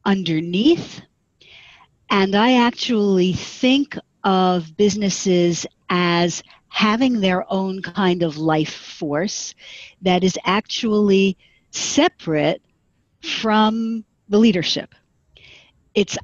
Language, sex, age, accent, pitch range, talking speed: English, female, 50-69, American, 190-260 Hz, 85 wpm